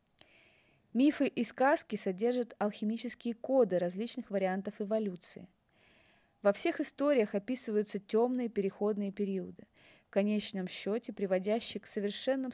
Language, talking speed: Russian, 105 wpm